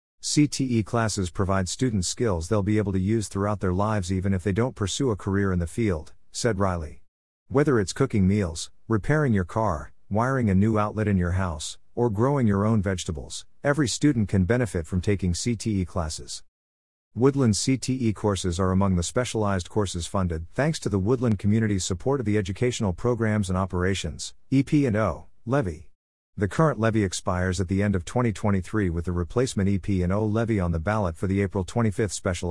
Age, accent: 50-69, American